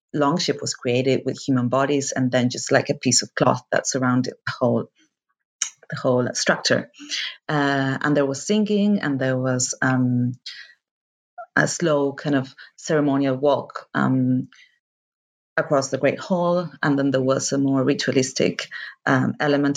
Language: English